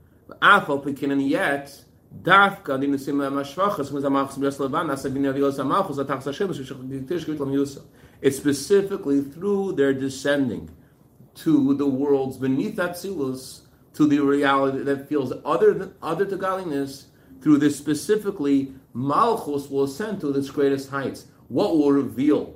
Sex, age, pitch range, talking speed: male, 40-59, 140-185 Hz, 95 wpm